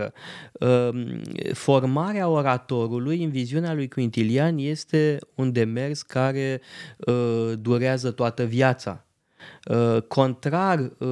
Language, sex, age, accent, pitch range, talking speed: Romanian, male, 20-39, native, 125-155 Hz, 75 wpm